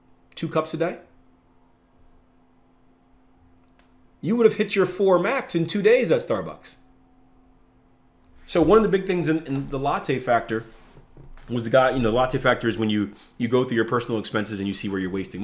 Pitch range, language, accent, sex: 95-135 Hz, English, American, male